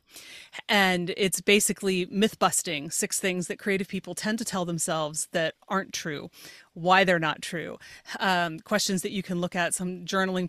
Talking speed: 170 wpm